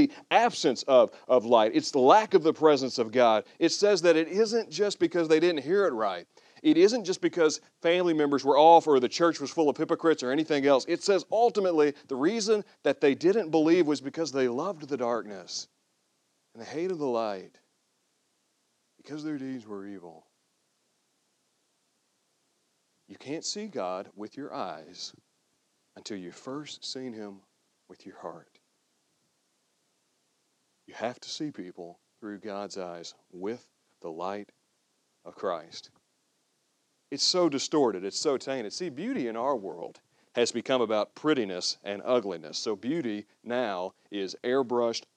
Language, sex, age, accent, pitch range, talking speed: English, male, 40-59, American, 120-180 Hz, 155 wpm